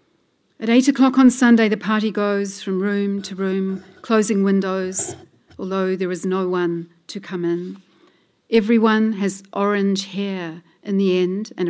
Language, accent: English, Australian